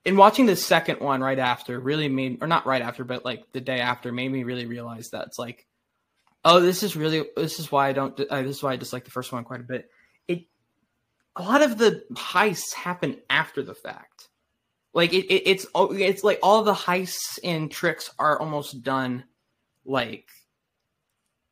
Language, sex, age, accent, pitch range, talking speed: English, male, 20-39, American, 130-165 Hz, 200 wpm